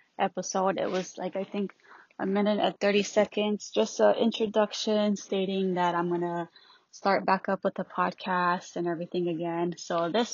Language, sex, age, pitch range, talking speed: English, female, 20-39, 180-220 Hz, 170 wpm